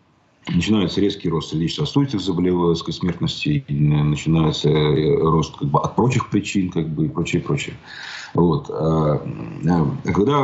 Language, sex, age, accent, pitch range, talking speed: Russian, male, 40-59, native, 90-140 Hz, 130 wpm